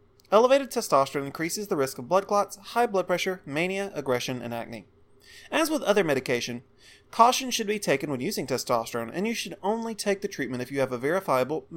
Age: 30-49